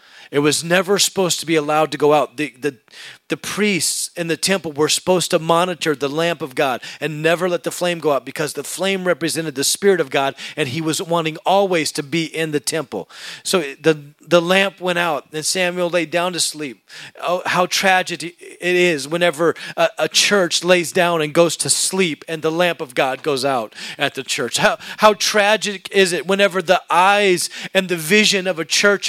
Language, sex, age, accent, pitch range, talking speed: English, male, 40-59, American, 170-240 Hz, 205 wpm